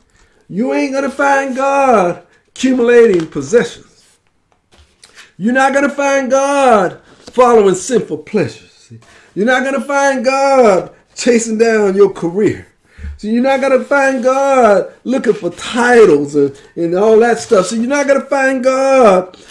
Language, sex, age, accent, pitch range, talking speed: English, male, 50-69, American, 215-270 Hz, 140 wpm